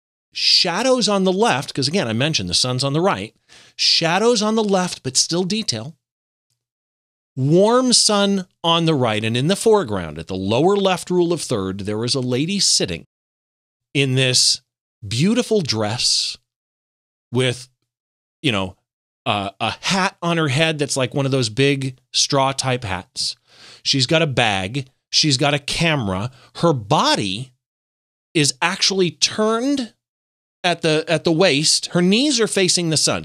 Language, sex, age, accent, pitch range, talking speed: English, male, 30-49, American, 125-180 Hz, 155 wpm